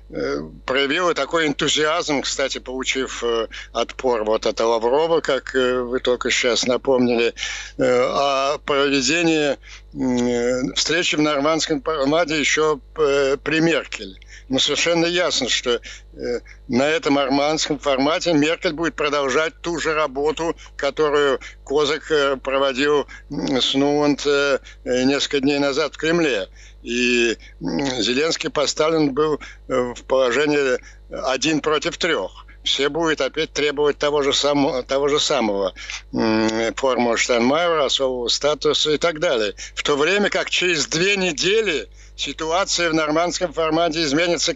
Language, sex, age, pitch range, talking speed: Ukrainian, male, 60-79, 135-160 Hz, 115 wpm